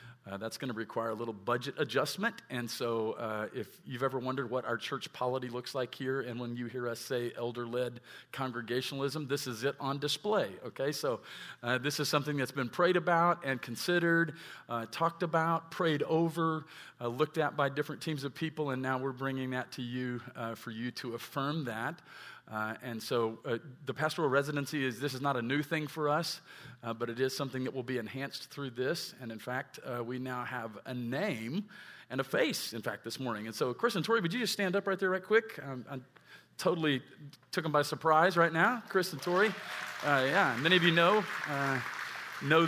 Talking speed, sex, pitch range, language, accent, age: 215 wpm, male, 120-150 Hz, English, American, 40-59